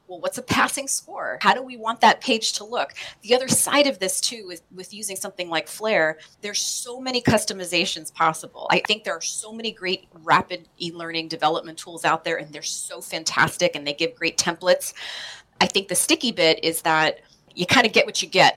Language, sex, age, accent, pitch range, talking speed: English, female, 30-49, American, 170-215 Hz, 215 wpm